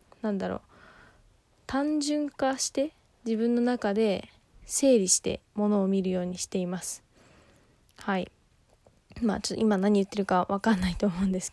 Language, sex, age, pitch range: Japanese, female, 20-39, 185-220 Hz